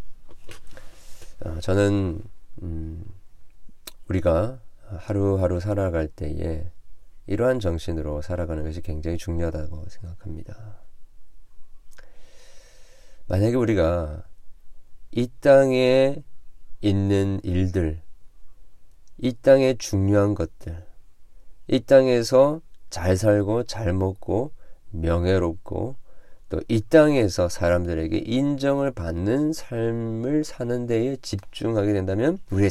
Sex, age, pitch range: male, 40-59, 85-120 Hz